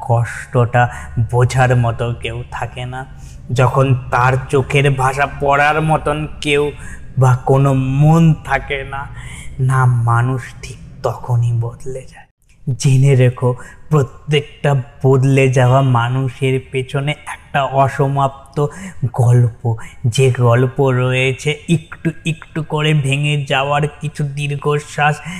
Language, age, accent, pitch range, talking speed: Bengali, 20-39, native, 120-145 Hz, 90 wpm